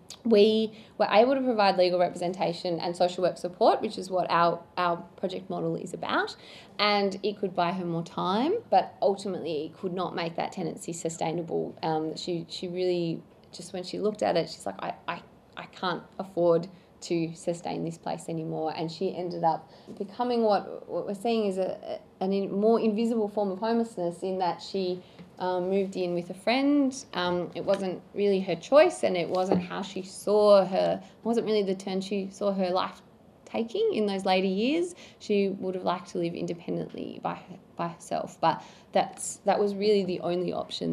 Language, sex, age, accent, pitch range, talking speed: English, female, 20-39, Australian, 175-210 Hz, 190 wpm